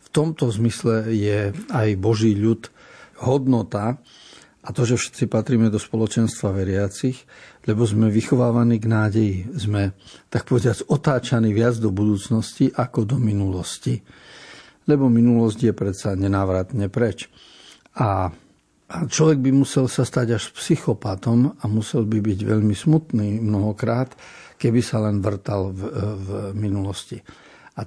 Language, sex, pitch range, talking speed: Slovak, male, 105-125 Hz, 130 wpm